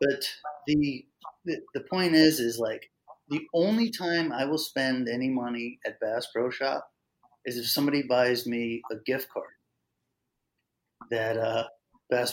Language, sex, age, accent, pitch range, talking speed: English, male, 30-49, American, 120-165 Hz, 145 wpm